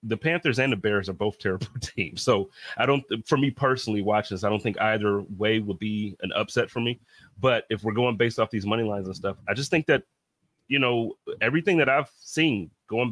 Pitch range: 105-120 Hz